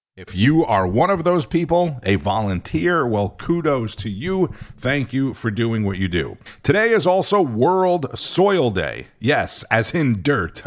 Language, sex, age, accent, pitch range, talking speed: English, male, 50-69, American, 100-140 Hz, 170 wpm